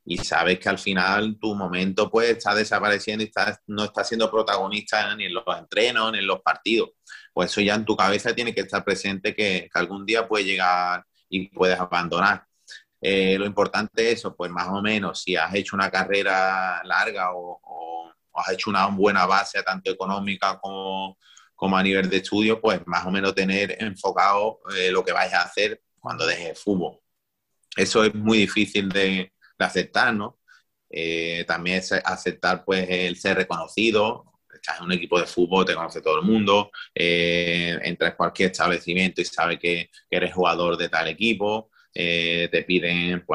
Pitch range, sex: 90-105 Hz, male